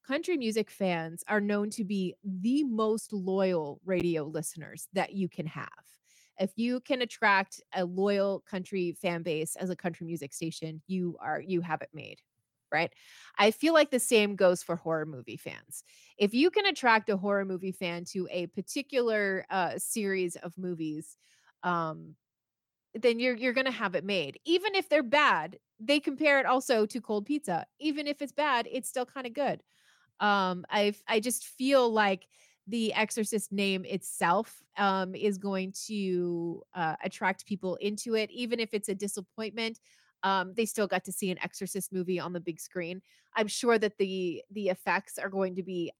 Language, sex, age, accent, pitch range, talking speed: English, female, 30-49, American, 185-230 Hz, 180 wpm